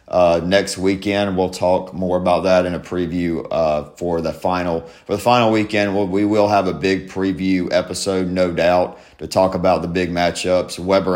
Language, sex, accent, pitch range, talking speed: English, male, American, 90-105 Hz, 195 wpm